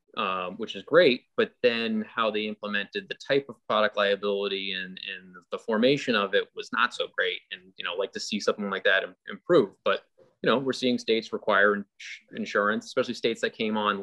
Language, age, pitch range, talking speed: English, 20-39, 90-120 Hz, 205 wpm